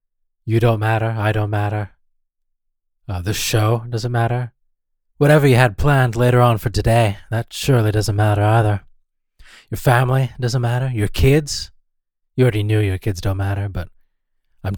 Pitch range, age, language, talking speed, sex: 100-130 Hz, 20-39, English, 160 wpm, male